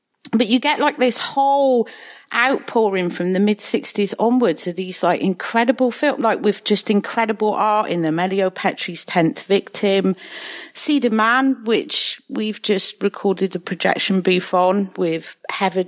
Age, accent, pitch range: 40-59, British, 180-235 Hz